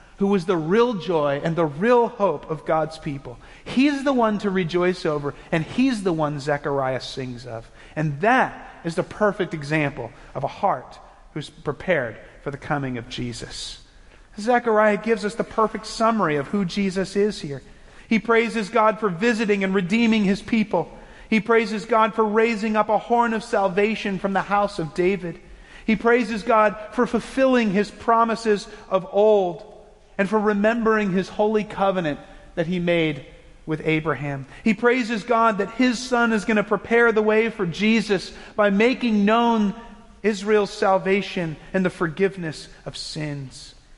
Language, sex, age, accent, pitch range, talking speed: English, male, 40-59, American, 170-220 Hz, 165 wpm